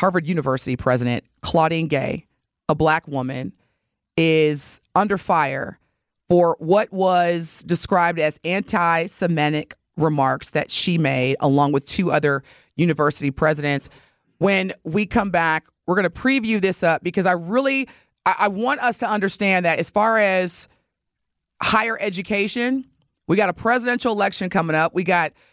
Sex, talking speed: female, 140 wpm